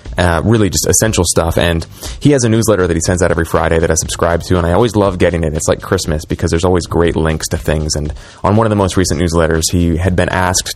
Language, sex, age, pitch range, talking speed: English, male, 30-49, 85-100 Hz, 270 wpm